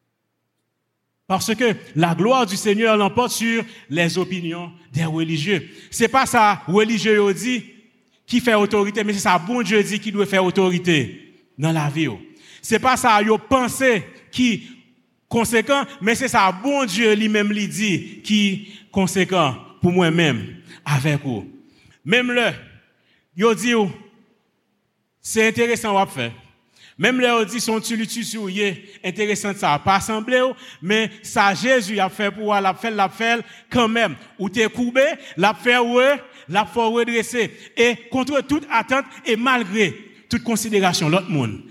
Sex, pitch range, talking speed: male, 175-230 Hz, 155 wpm